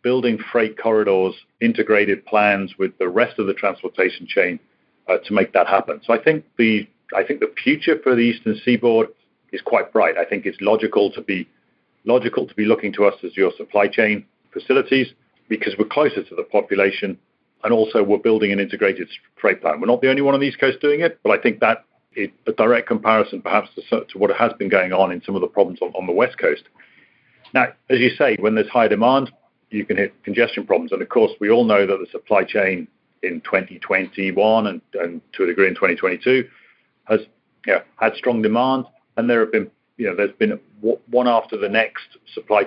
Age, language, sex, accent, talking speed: 40-59, English, male, British, 210 wpm